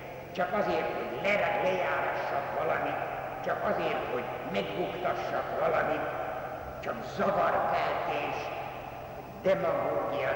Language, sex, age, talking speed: Hungarian, male, 60-79, 75 wpm